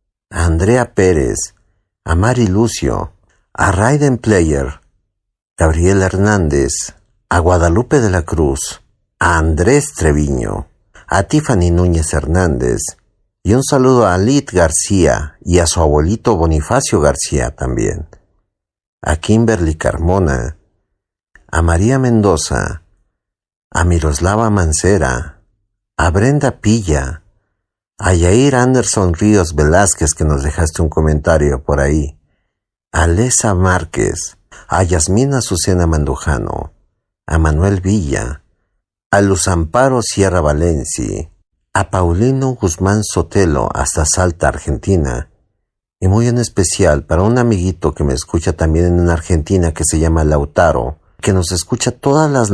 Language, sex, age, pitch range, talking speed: Spanish, male, 50-69, 80-105 Hz, 120 wpm